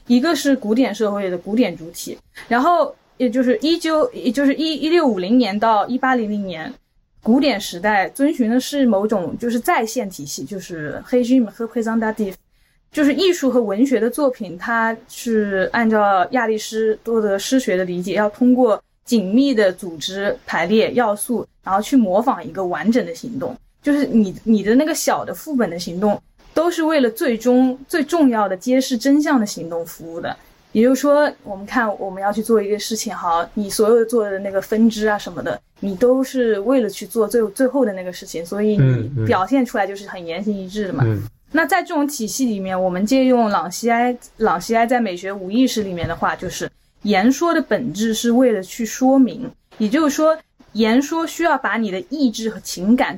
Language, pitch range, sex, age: Chinese, 200-260 Hz, female, 10-29